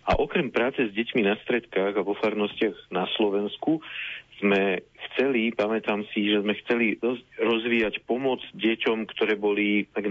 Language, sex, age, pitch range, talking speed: Slovak, male, 40-59, 95-110 Hz, 150 wpm